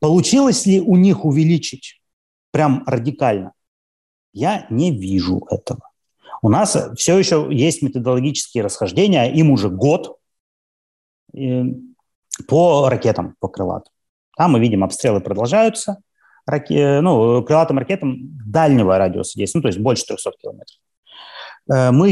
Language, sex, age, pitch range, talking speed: Russian, male, 30-49, 120-160 Hz, 115 wpm